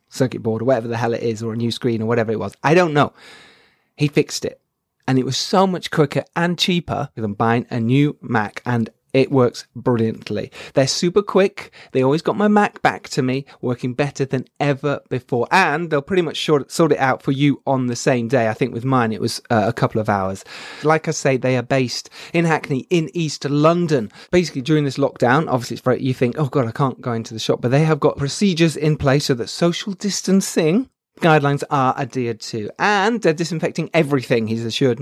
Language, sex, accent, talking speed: English, male, British, 220 wpm